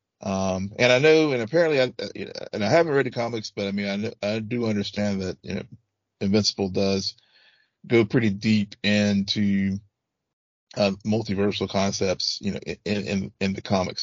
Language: English